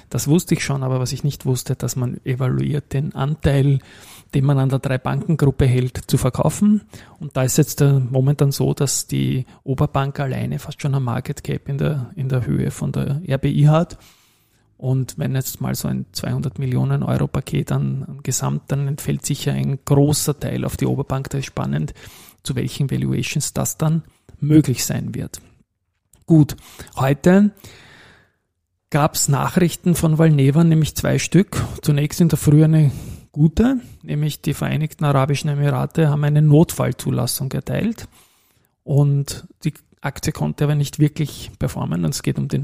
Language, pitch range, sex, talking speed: German, 130-150 Hz, male, 160 wpm